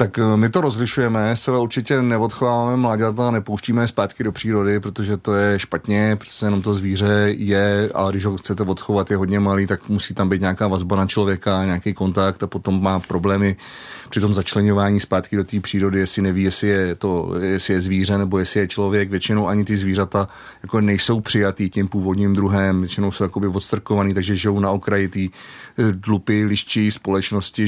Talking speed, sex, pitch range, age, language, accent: 180 wpm, male, 100-115 Hz, 30-49, Czech, native